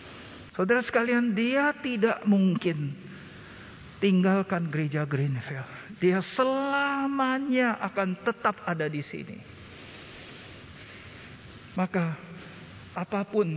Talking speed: 75 wpm